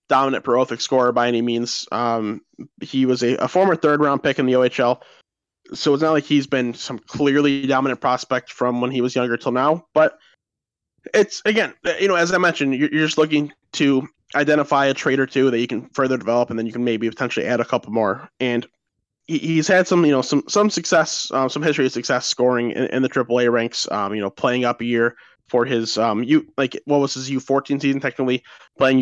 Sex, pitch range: male, 120-150 Hz